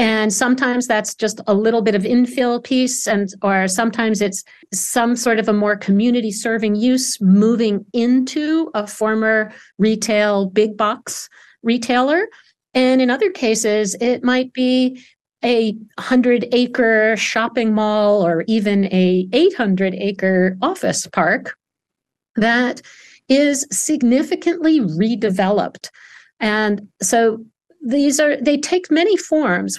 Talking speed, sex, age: 115 wpm, female, 50-69